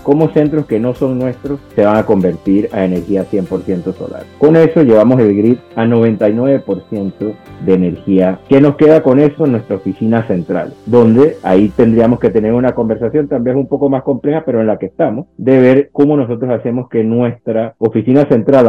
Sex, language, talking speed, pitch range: male, English, 185 wpm, 105-140 Hz